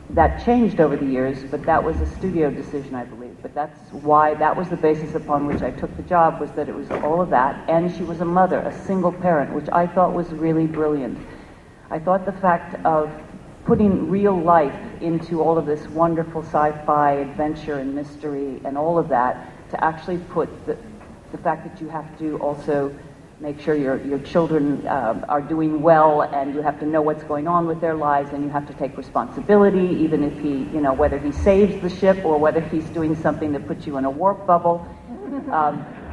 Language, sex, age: English, female, 50-69